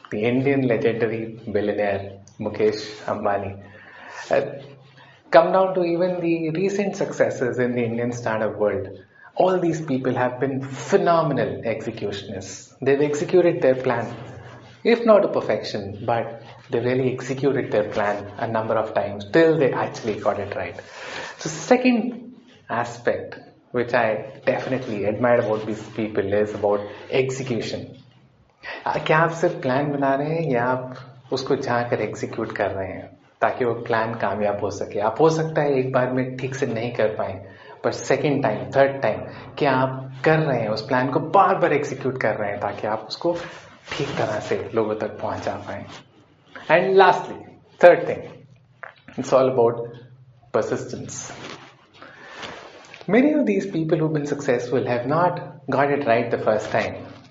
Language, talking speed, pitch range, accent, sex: English, 110 wpm, 110-155 Hz, Indian, male